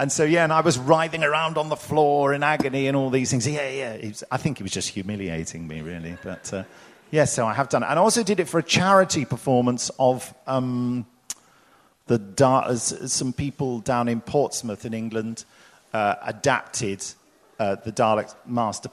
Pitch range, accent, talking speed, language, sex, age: 110-135 Hz, British, 195 wpm, German, male, 40-59